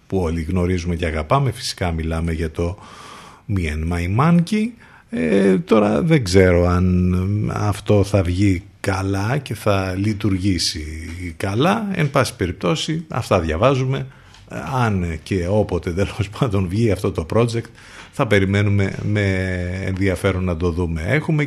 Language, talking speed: Greek, 130 wpm